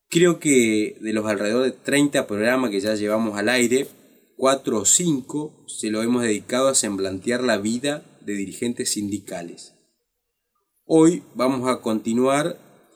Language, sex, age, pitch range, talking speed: Spanish, male, 30-49, 105-135 Hz, 145 wpm